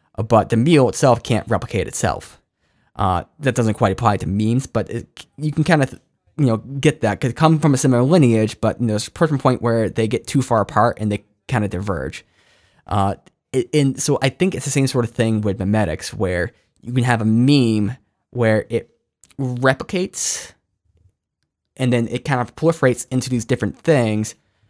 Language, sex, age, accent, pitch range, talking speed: English, male, 10-29, American, 105-130 Hz, 195 wpm